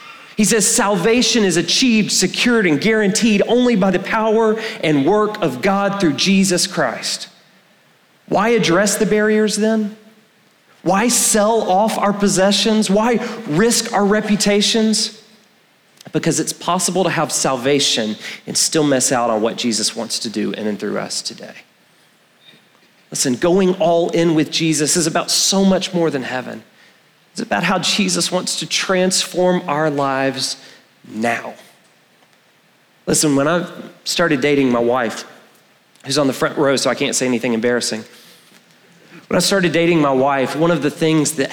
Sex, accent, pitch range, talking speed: male, American, 145-205 Hz, 155 wpm